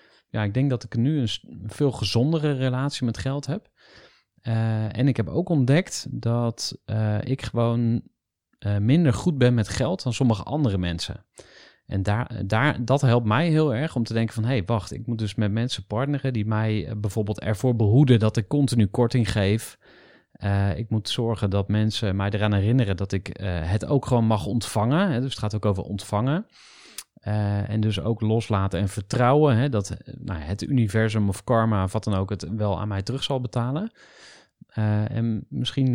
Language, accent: Dutch, Dutch